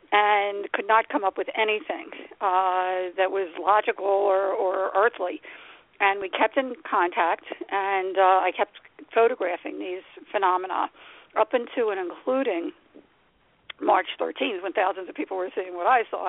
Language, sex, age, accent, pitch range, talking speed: English, female, 50-69, American, 190-255 Hz, 150 wpm